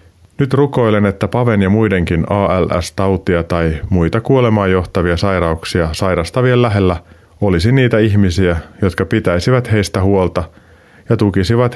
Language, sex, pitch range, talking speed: Finnish, male, 85-110 Hz, 115 wpm